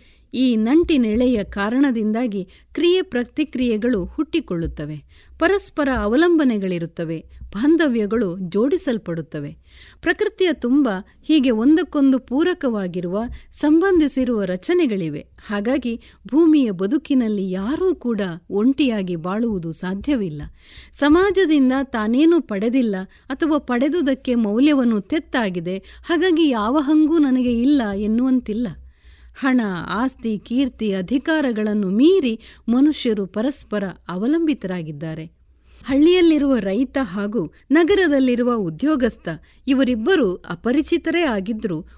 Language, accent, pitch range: Kannada, native, 200-295 Hz